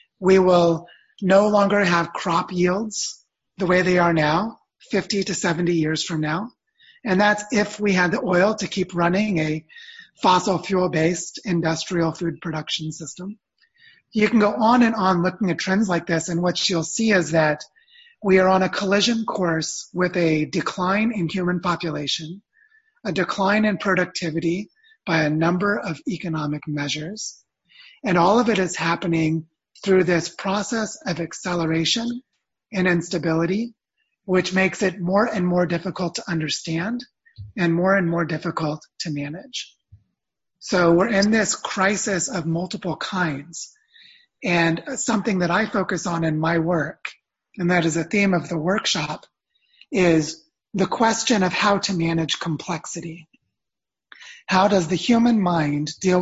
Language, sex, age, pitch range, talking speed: English, male, 30-49, 165-210 Hz, 150 wpm